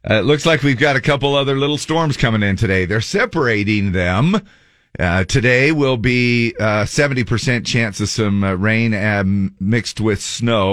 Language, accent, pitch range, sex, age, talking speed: English, American, 90-115 Hz, male, 50-69, 175 wpm